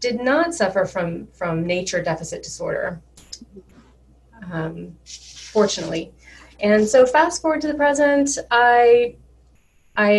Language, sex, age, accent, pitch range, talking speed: English, female, 30-49, American, 165-215 Hz, 110 wpm